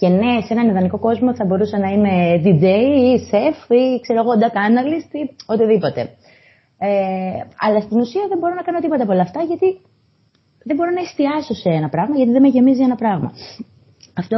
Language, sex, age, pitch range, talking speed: Greek, female, 20-39, 170-245 Hz, 190 wpm